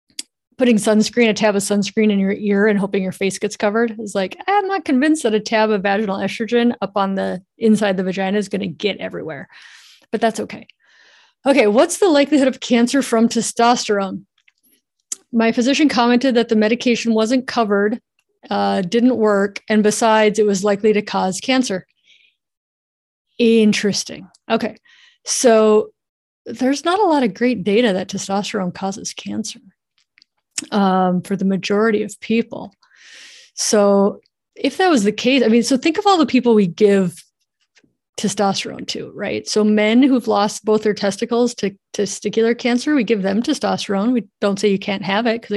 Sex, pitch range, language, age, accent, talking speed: female, 200-240 Hz, English, 30-49, American, 170 wpm